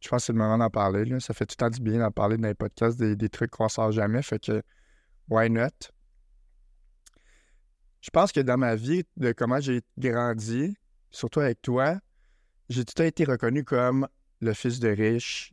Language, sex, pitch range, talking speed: French, male, 110-130 Hz, 215 wpm